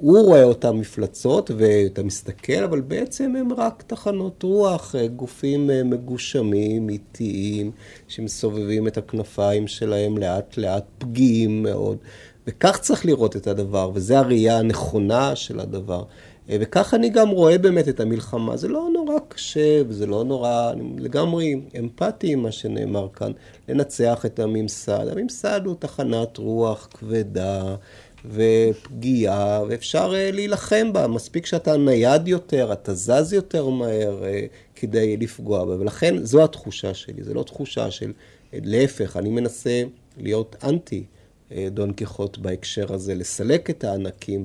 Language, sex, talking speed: Hebrew, male, 135 wpm